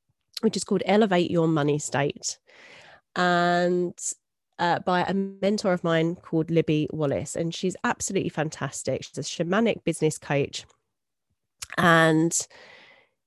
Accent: British